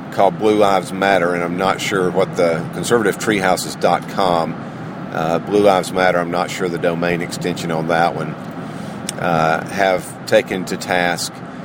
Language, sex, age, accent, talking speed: English, male, 50-69, American, 150 wpm